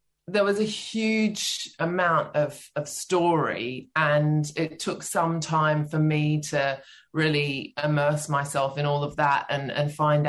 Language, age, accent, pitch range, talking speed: English, 20-39, British, 145-170 Hz, 150 wpm